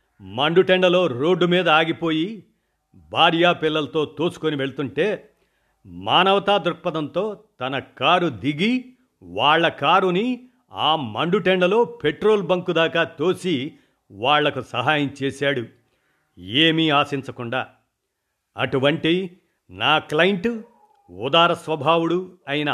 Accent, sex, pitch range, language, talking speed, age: native, male, 145-185 Hz, Telugu, 80 wpm, 50-69